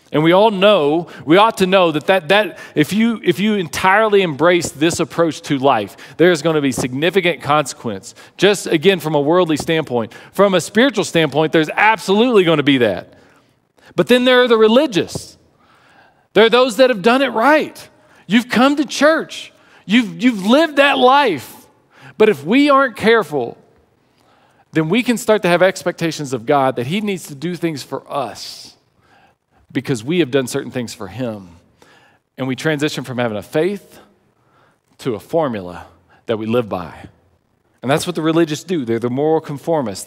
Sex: male